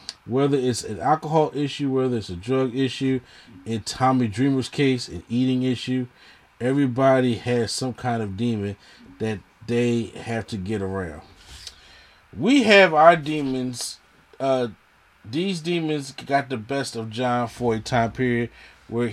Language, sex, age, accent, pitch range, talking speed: English, male, 30-49, American, 115-140 Hz, 145 wpm